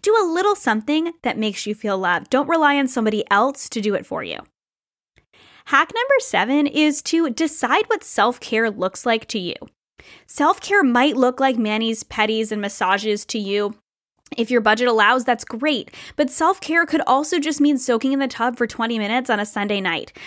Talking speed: 190 wpm